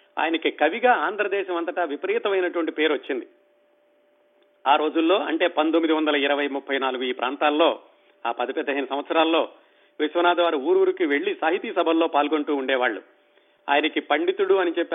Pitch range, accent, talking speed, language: 155-195 Hz, native, 115 wpm, Telugu